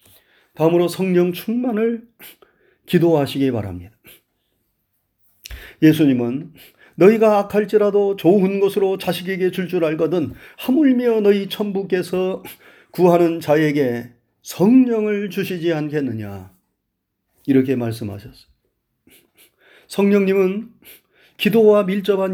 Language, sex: Korean, male